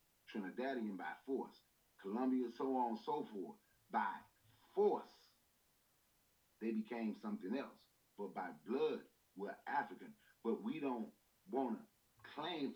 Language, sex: English, male